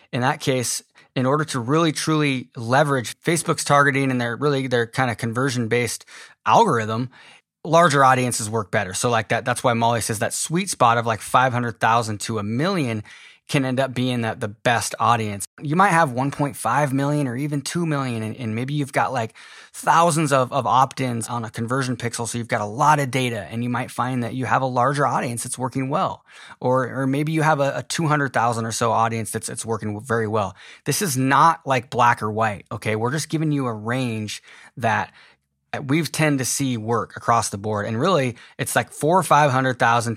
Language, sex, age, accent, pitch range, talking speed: English, male, 20-39, American, 115-145 Hz, 210 wpm